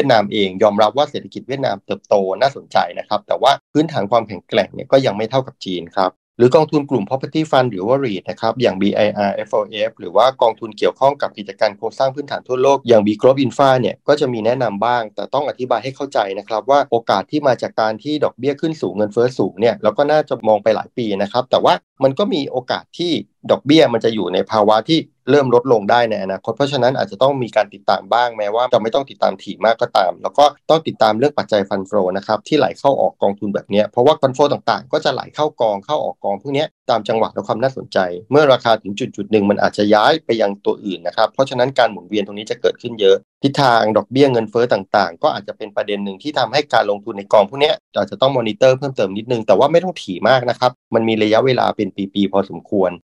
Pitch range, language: 105-140 Hz, English